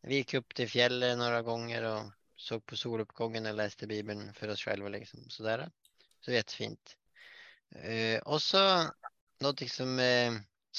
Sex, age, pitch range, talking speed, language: male, 20-39, 105-125 Hz, 160 wpm, Swedish